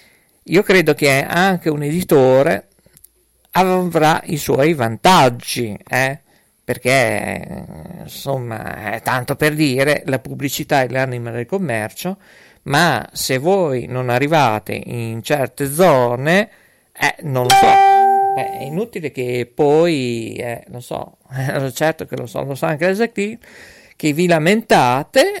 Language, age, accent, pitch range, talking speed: Italian, 50-69, native, 130-175 Hz, 125 wpm